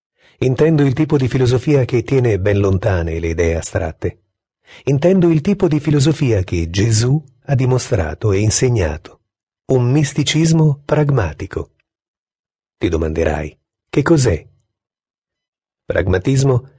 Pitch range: 95-155 Hz